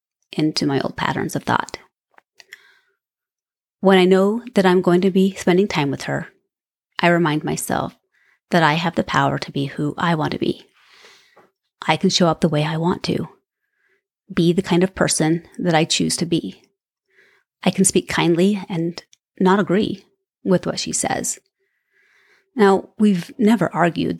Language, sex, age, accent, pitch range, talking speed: English, female, 30-49, American, 170-230 Hz, 165 wpm